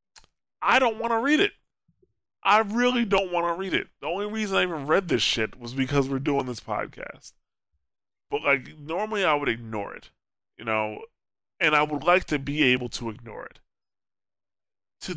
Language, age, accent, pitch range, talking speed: English, 20-39, American, 115-170 Hz, 185 wpm